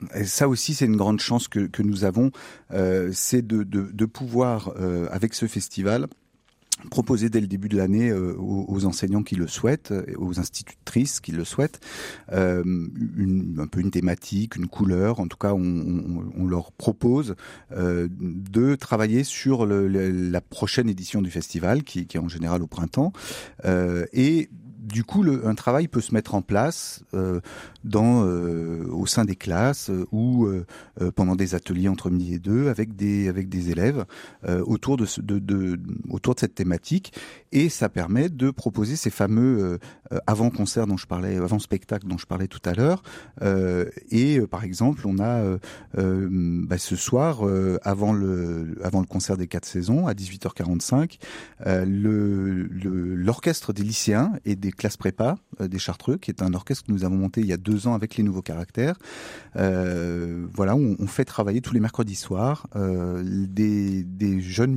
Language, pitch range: French, 90-120 Hz